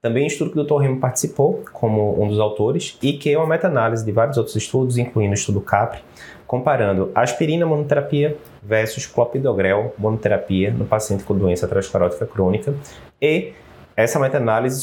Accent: Brazilian